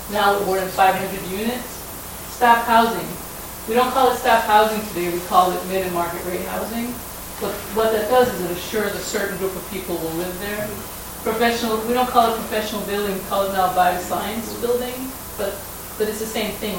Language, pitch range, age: English, 190-230 Hz, 30-49